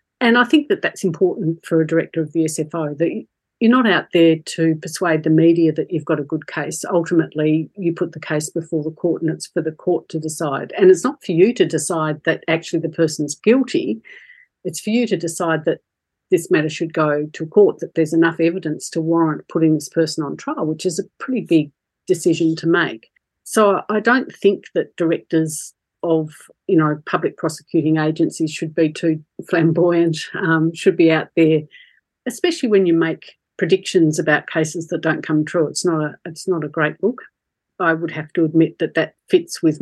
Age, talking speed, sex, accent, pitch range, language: 50-69, 200 wpm, female, Australian, 160-180 Hz, English